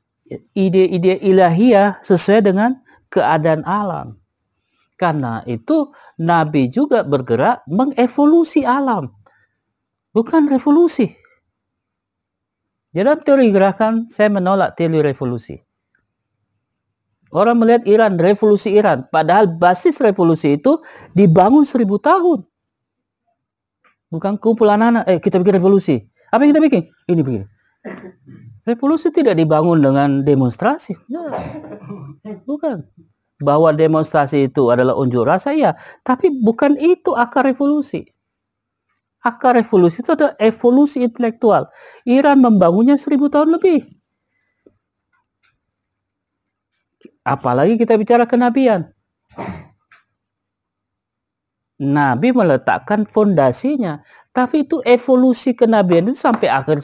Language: Indonesian